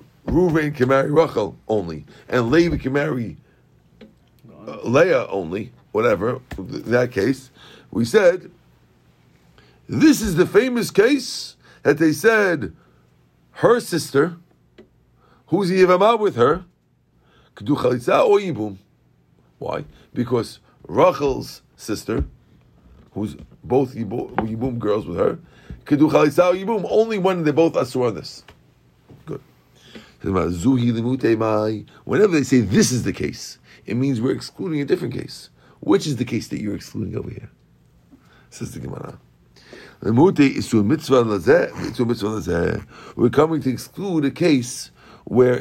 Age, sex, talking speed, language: 50-69, male, 115 wpm, English